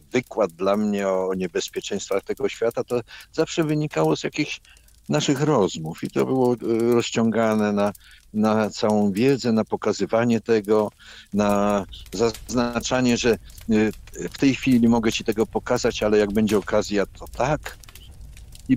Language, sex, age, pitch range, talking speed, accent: Polish, male, 60-79, 100-135 Hz, 135 wpm, native